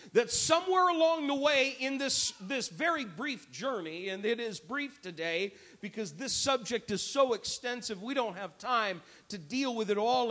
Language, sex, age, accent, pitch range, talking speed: English, male, 50-69, American, 225-305 Hz, 180 wpm